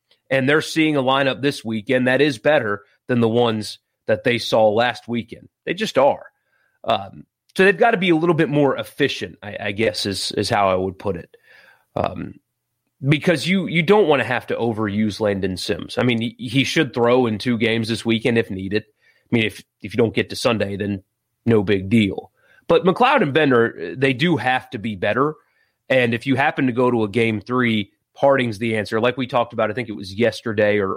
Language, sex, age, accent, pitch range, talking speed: English, male, 30-49, American, 105-130 Hz, 220 wpm